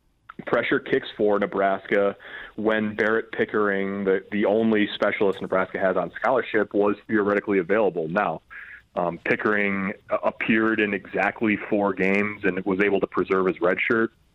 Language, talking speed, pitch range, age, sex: English, 140 wpm, 95-105 Hz, 30-49, male